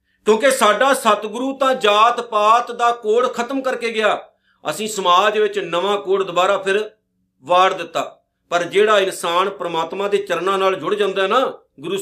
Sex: male